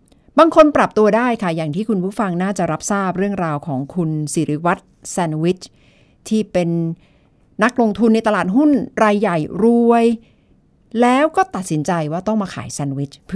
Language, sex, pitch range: Thai, female, 170-225 Hz